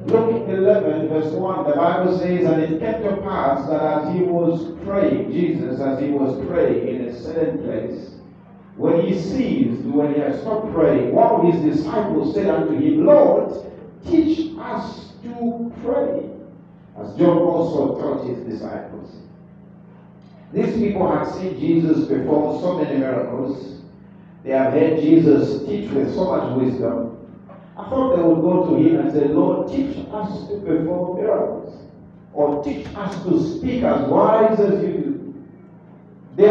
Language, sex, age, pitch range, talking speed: English, male, 50-69, 150-200 Hz, 160 wpm